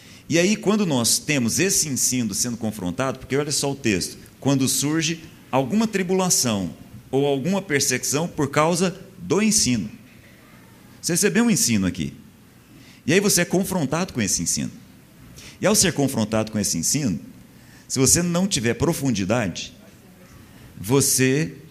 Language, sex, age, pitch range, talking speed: Portuguese, male, 50-69, 115-170 Hz, 140 wpm